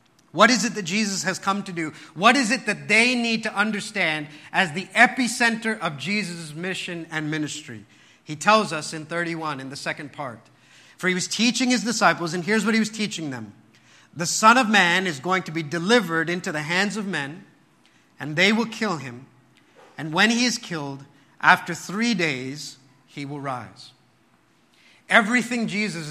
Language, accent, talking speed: English, American, 180 wpm